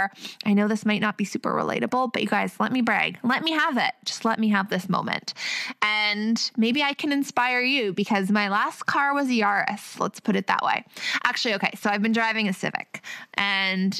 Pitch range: 195-245 Hz